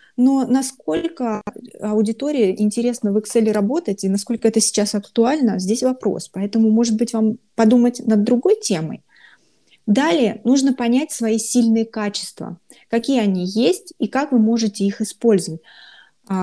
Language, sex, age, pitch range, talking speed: Russian, female, 20-39, 205-240 Hz, 135 wpm